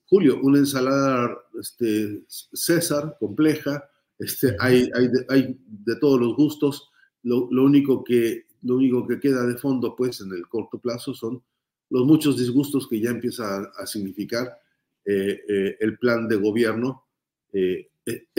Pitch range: 115-135 Hz